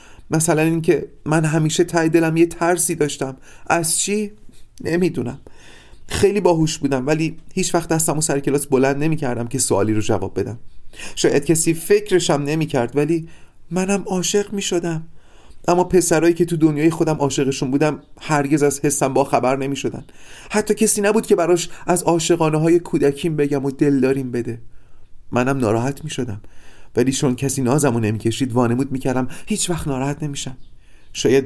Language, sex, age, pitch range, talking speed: Persian, male, 30-49, 110-160 Hz, 160 wpm